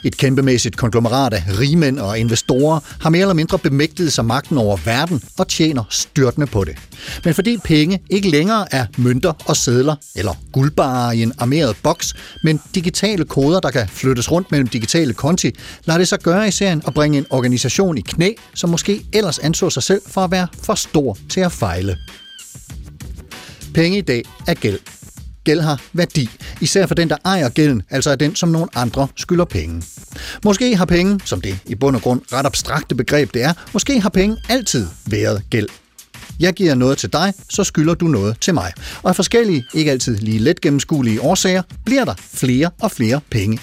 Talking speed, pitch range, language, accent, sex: 195 wpm, 125-175 Hz, Danish, native, male